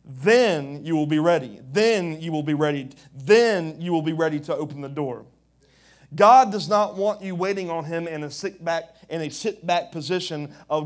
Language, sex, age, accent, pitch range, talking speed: English, male, 30-49, American, 155-180 Hz, 205 wpm